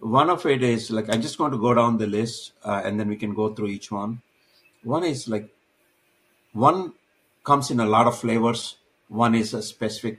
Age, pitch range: 60-79, 105-120 Hz